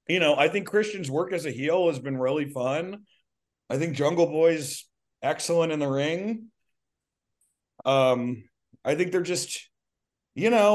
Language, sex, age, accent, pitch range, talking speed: English, male, 30-49, American, 130-190 Hz, 155 wpm